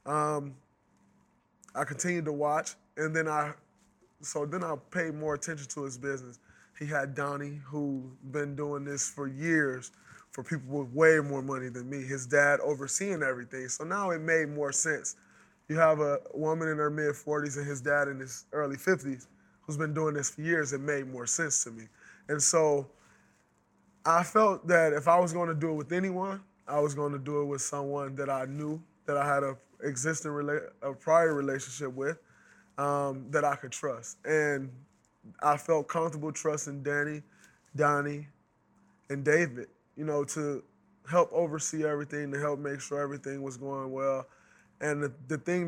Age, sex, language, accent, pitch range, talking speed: 20-39, male, English, American, 140-155 Hz, 180 wpm